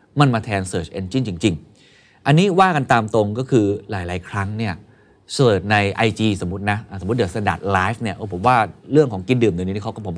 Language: Thai